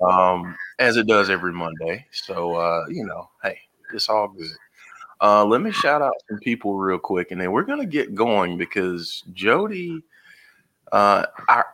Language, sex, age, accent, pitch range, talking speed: English, male, 30-49, American, 90-125 Hz, 170 wpm